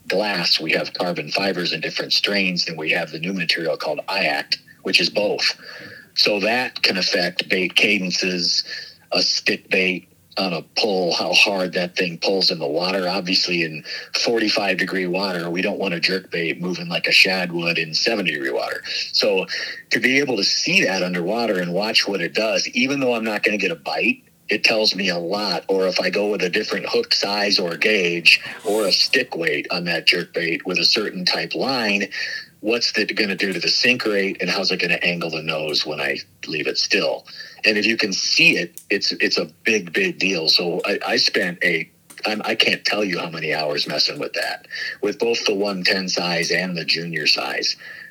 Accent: American